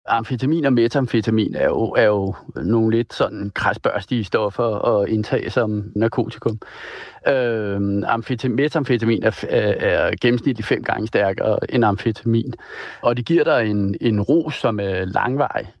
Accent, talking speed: native, 135 wpm